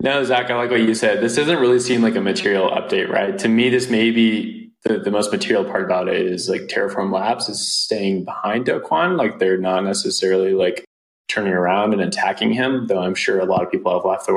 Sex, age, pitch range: male, 20-39, 95-120 Hz